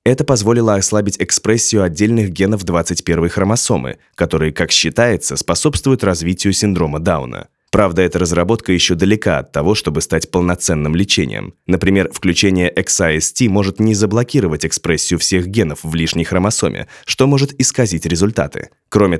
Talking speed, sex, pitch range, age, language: 135 wpm, male, 90-115 Hz, 20-39, Russian